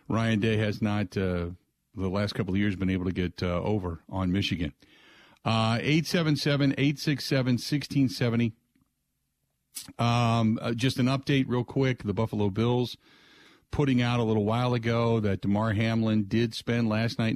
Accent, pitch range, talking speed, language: American, 100-125 Hz, 145 wpm, English